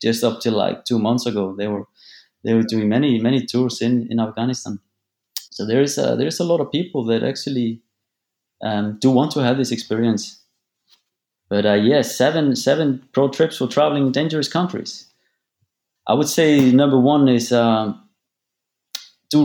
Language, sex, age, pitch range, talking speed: English, male, 30-49, 100-120 Hz, 175 wpm